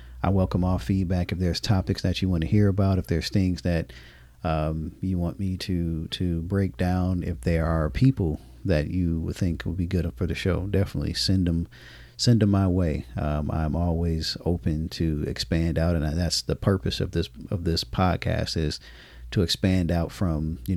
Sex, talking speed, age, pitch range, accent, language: male, 195 wpm, 40-59, 80-95 Hz, American, English